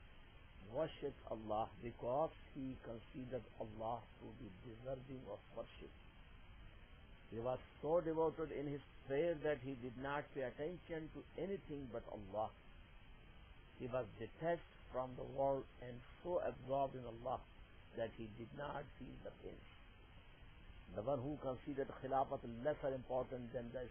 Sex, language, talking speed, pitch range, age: male, English, 140 wpm, 110-145 Hz, 60-79